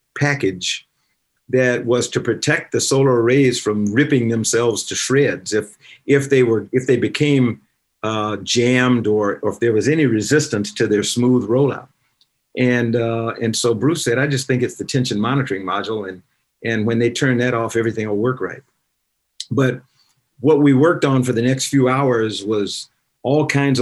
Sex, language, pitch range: male, English, 110-130 Hz